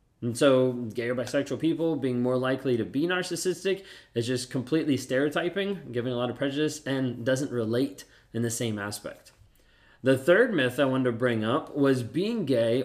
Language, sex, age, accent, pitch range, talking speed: English, male, 20-39, American, 120-145 Hz, 180 wpm